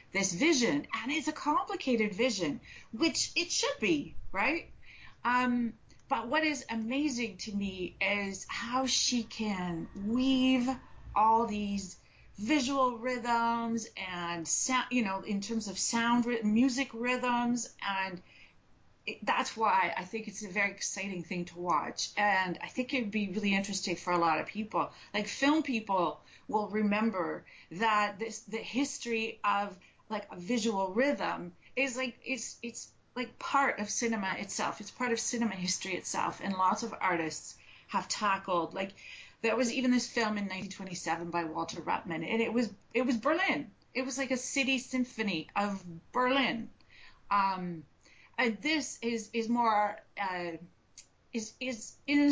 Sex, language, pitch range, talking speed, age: female, English, 195-255 Hz, 155 wpm, 40-59